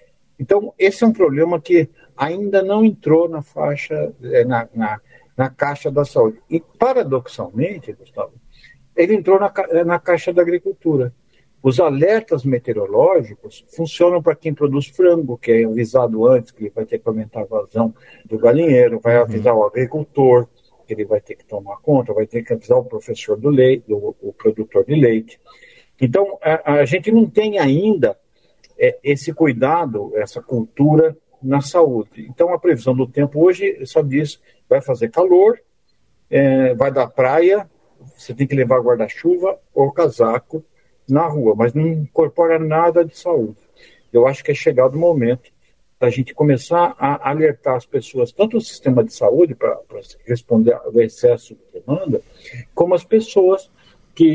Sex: male